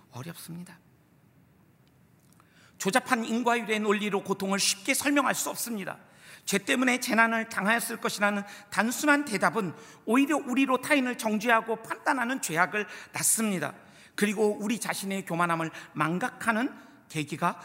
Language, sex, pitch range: Korean, male, 180-250 Hz